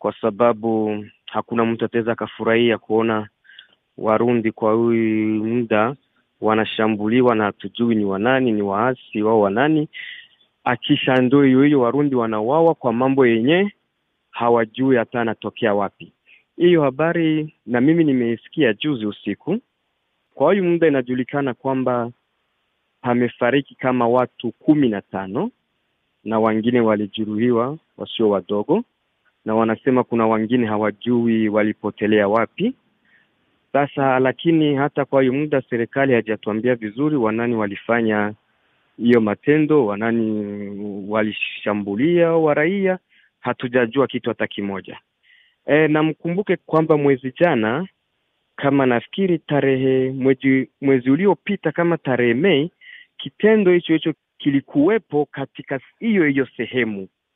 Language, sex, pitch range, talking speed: Swahili, male, 110-145 Hz, 105 wpm